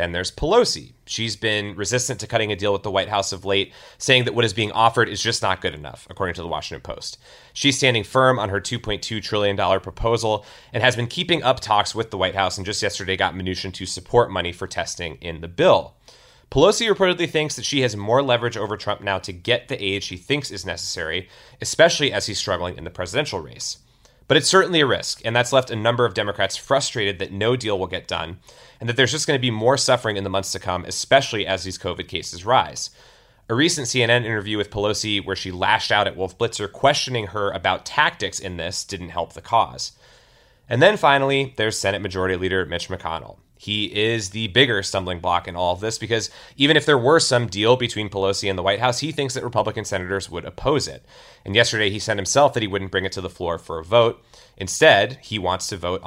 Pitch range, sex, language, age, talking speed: 95-125 Hz, male, English, 30-49, 230 wpm